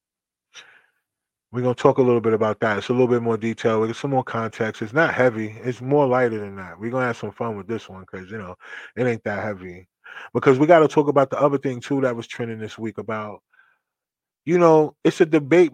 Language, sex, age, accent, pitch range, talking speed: English, male, 20-39, American, 115-160 Hz, 250 wpm